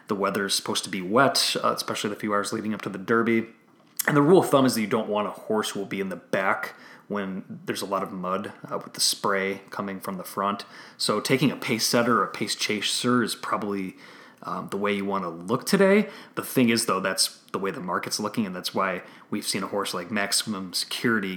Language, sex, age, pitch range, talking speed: English, male, 30-49, 100-115 Hz, 245 wpm